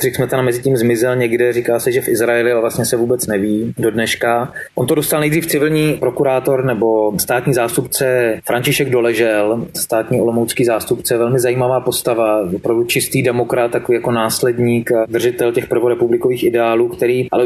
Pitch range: 120-135 Hz